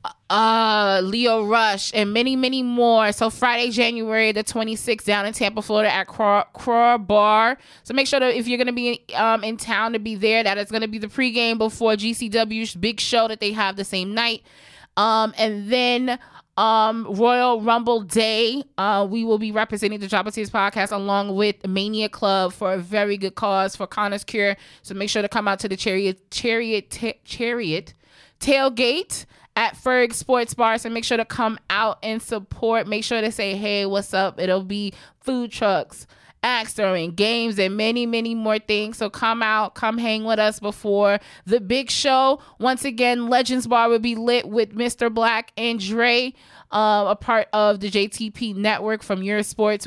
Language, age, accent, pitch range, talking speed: English, 20-39, American, 205-235 Hz, 190 wpm